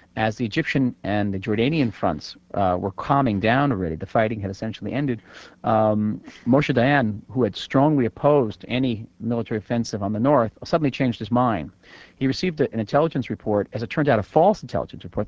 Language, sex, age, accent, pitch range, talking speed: English, male, 40-59, American, 100-125 Hz, 185 wpm